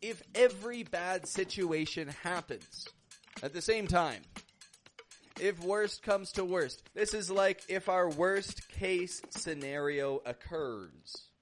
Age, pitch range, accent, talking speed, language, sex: 30-49, 155-225 Hz, American, 120 wpm, English, male